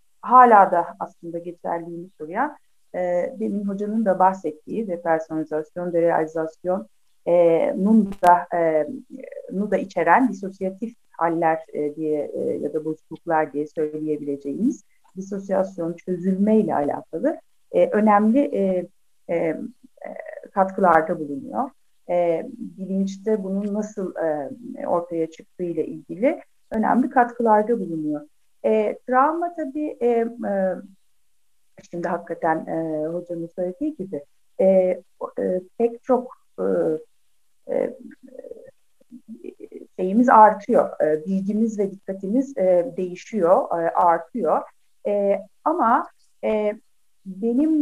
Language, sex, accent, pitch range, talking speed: Turkish, female, native, 170-245 Hz, 100 wpm